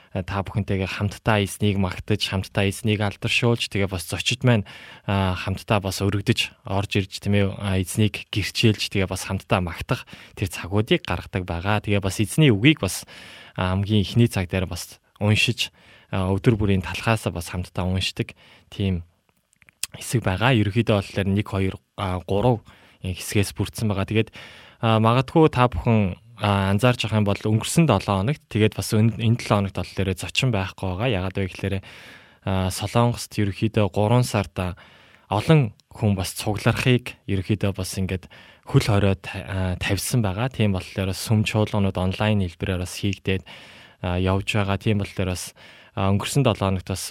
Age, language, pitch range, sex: 20-39, Korean, 95-115 Hz, male